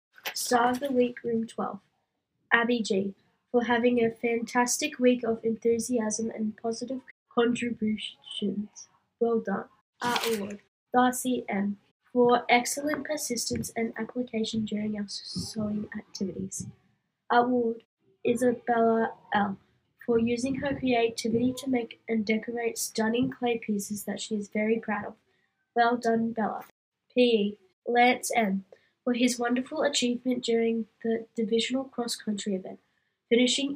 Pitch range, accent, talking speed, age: 215-245 Hz, Australian, 125 wpm, 10-29